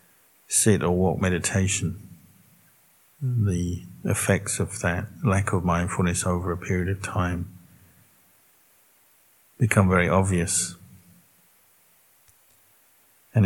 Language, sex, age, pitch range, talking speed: English, male, 50-69, 90-100 Hz, 90 wpm